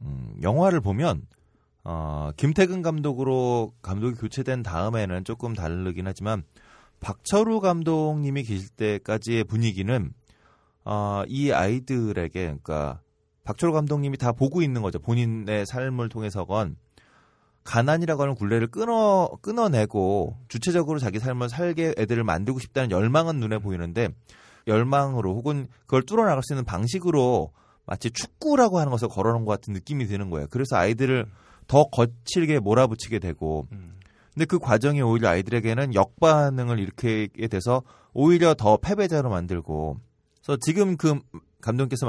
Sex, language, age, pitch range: male, Korean, 30-49, 105-145 Hz